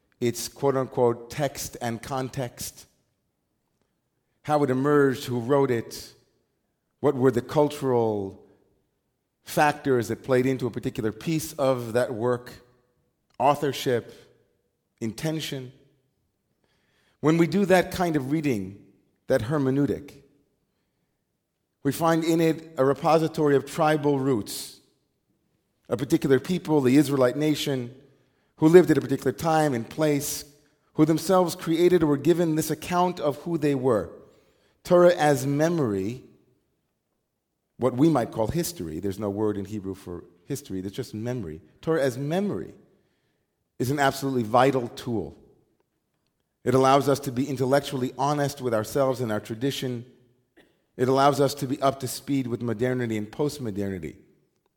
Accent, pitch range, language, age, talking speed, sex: American, 120-150 Hz, English, 40-59, 135 wpm, male